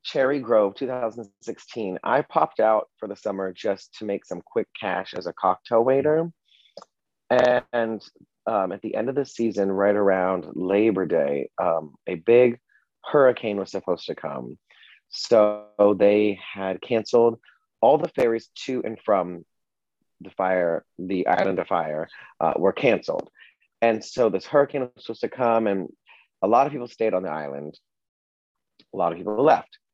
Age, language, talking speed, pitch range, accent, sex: 30-49, English, 160 wpm, 95-120 Hz, American, male